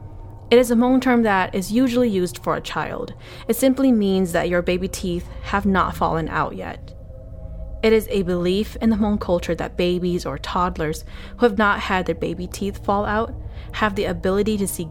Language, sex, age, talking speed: English, female, 20-39, 200 wpm